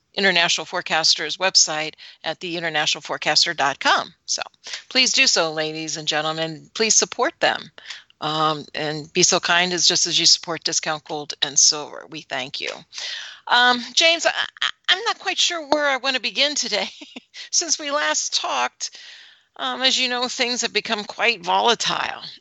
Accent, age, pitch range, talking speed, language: American, 40-59, 170-240 Hz, 160 wpm, English